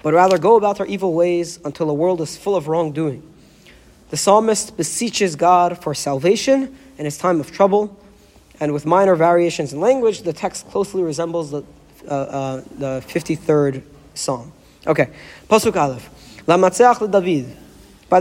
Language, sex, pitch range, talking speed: English, male, 155-200 Hz, 160 wpm